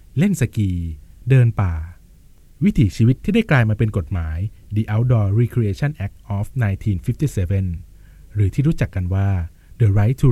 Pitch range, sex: 95-125 Hz, male